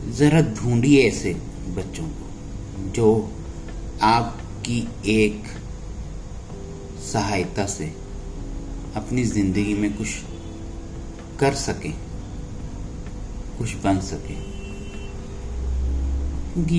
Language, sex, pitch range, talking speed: Punjabi, male, 85-105 Hz, 70 wpm